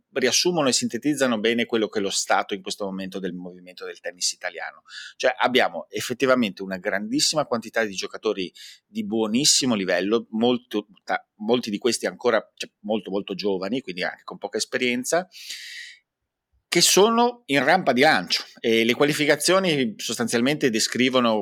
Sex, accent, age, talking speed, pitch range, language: male, native, 30-49, 150 wpm, 100-155 Hz, Italian